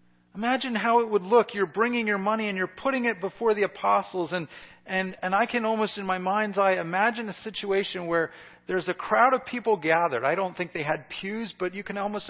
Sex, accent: male, American